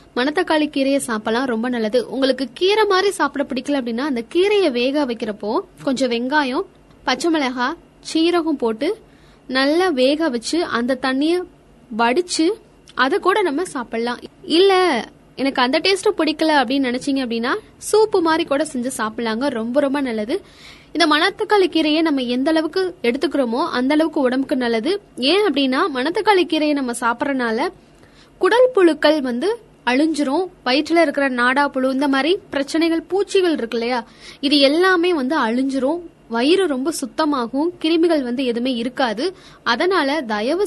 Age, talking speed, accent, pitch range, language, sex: 20-39, 130 wpm, native, 255-335 Hz, Tamil, female